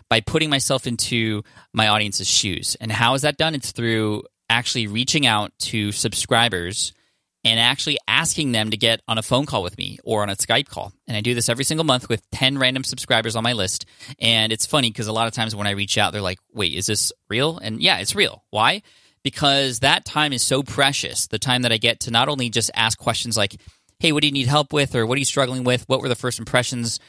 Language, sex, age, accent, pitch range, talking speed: English, male, 20-39, American, 105-130 Hz, 240 wpm